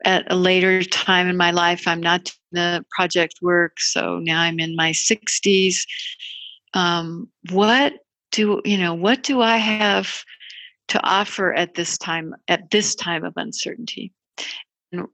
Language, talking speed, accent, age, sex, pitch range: English, 155 wpm, American, 60-79, female, 175-210 Hz